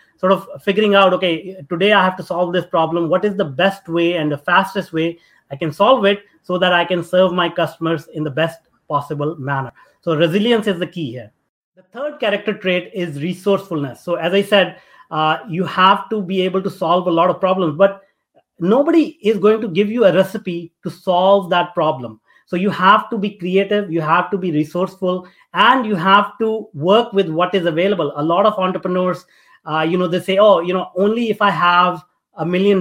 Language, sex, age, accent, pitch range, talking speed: English, male, 30-49, Indian, 165-195 Hz, 210 wpm